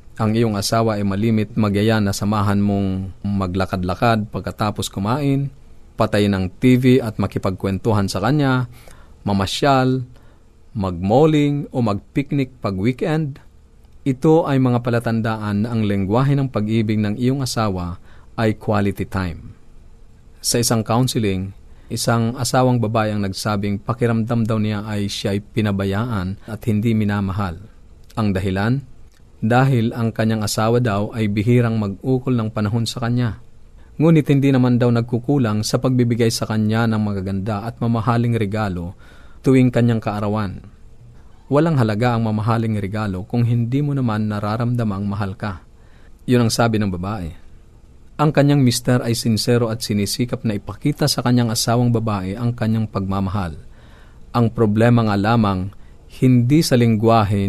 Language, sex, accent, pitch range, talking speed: Filipino, male, native, 100-120 Hz, 135 wpm